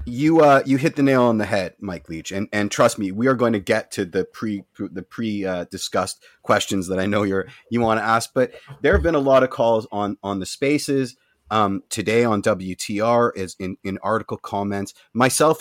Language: English